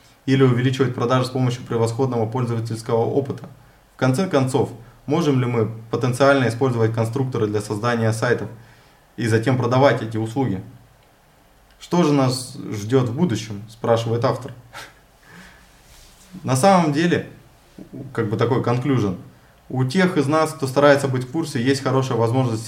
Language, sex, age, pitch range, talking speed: Russian, male, 20-39, 115-135 Hz, 140 wpm